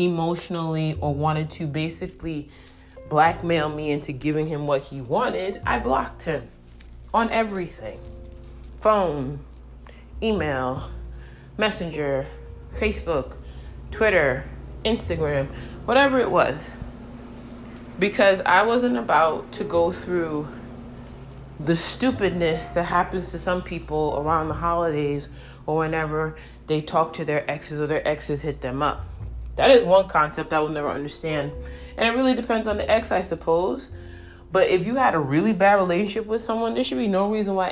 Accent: American